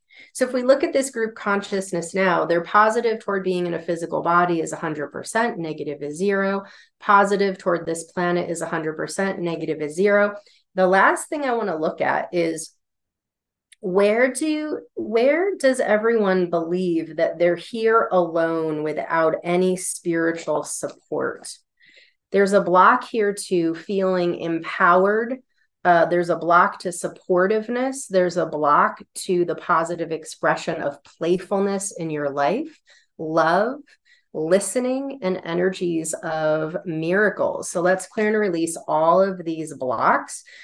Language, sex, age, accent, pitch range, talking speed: English, female, 30-49, American, 165-210 Hz, 140 wpm